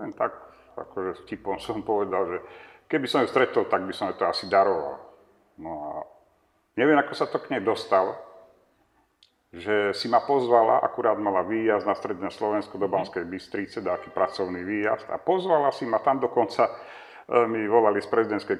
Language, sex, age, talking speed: Slovak, male, 50-69, 175 wpm